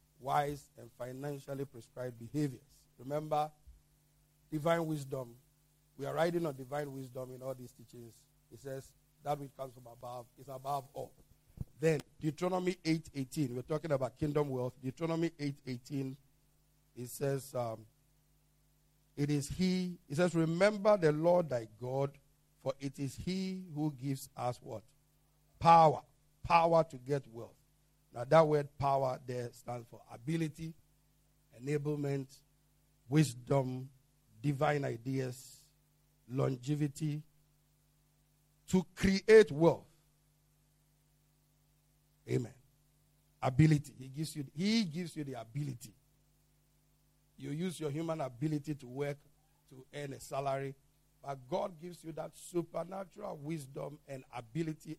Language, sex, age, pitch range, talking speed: English, male, 50-69, 135-150 Hz, 120 wpm